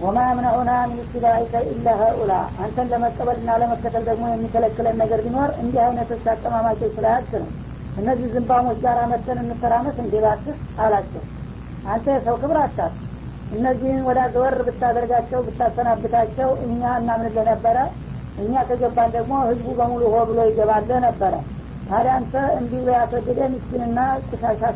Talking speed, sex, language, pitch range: 120 wpm, female, Amharic, 225-250 Hz